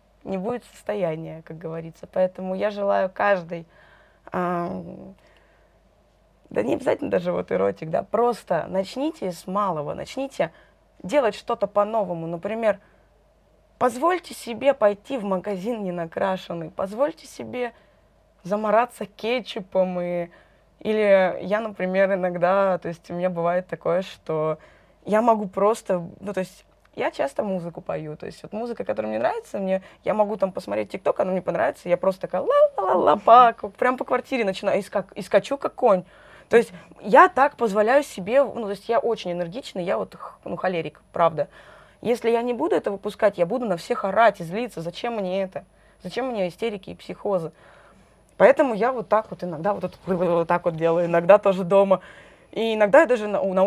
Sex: female